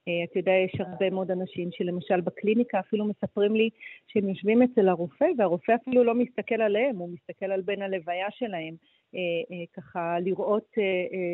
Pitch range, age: 180-220 Hz, 40-59